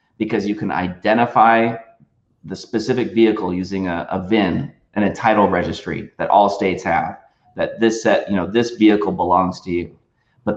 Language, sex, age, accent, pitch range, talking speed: English, male, 30-49, American, 95-120 Hz, 170 wpm